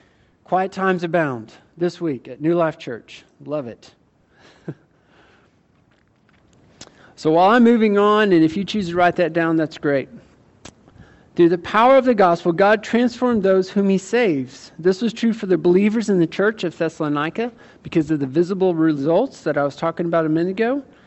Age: 50-69